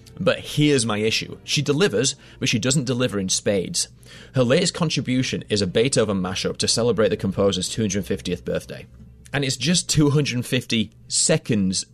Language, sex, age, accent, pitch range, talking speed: English, male, 30-49, British, 95-130 Hz, 150 wpm